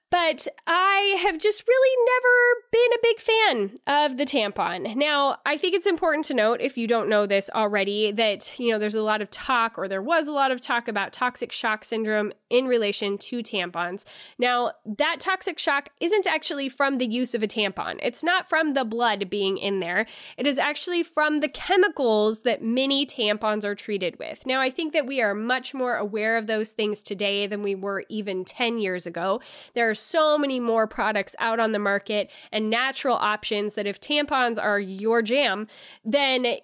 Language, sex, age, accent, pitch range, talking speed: English, female, 10-29, American, 210-290 Hz, 200 wpm